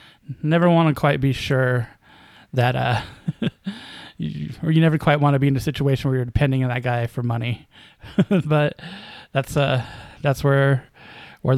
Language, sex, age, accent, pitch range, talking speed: English, male, 20-39, American, 125-155 Hz, 170 wpm